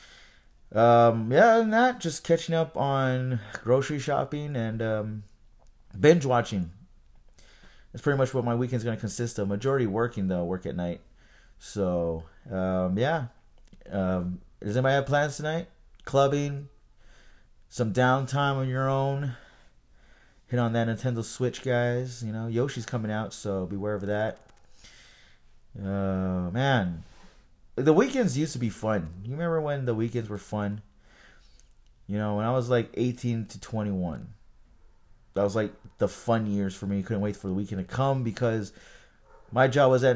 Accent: American